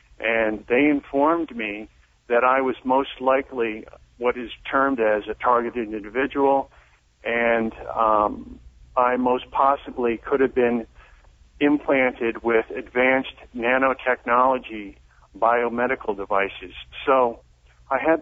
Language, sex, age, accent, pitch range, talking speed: English, male, 50-69, American, 115-140 Hz, 110 wpm